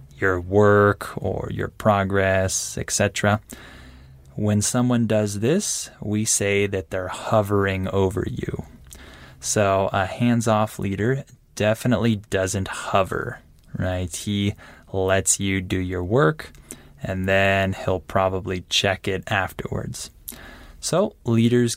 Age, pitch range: 20-39, 95-115 Hz